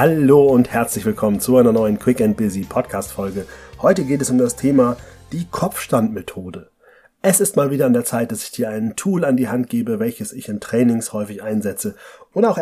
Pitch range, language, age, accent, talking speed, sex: 115-150 Hz, German, 30-49, German, 210 wpm, male